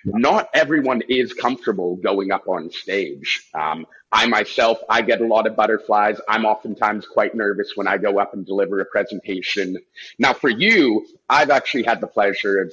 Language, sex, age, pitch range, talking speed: English, male, 30-49, 95-125 Hz, 180 wpm